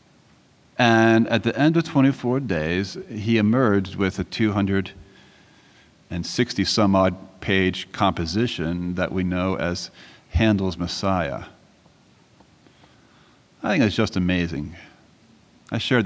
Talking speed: 100 wpm